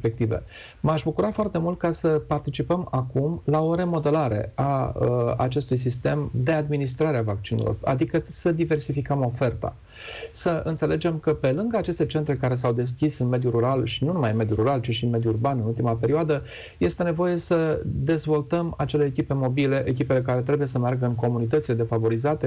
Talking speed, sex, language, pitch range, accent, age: 175 wpm, male, Romanian, 120-155 Hz, native, 40-59